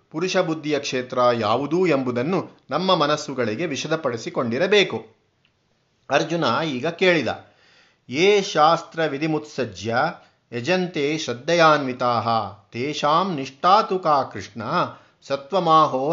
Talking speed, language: 80 wpm, Kannada